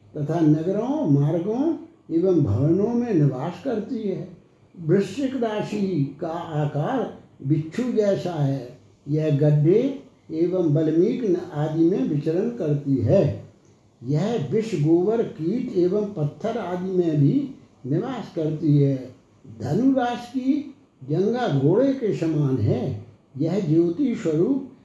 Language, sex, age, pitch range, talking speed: Hindi, male, 60-79, 145-205 Hz, 115 wpm